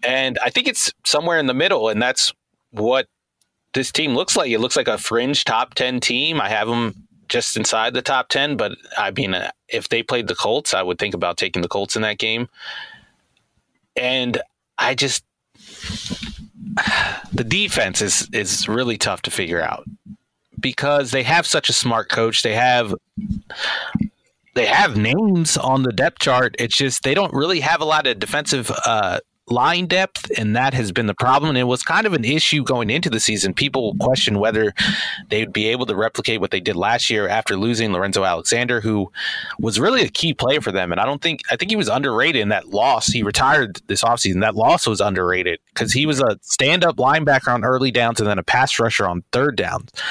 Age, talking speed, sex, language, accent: 30-49, 200 wpm, male, English, American